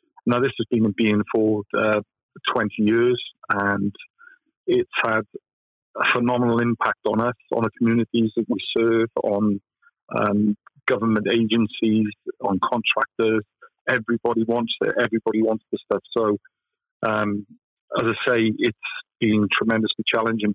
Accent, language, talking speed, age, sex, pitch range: British, English, 135 wpm, 40-59, male, 110-120 Hz